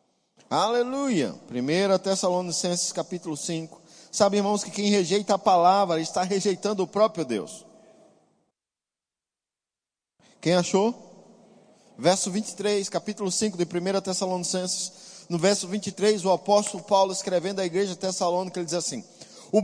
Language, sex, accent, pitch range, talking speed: Portuguese, male, Brazilian, 180-220 Hz, 120 wpm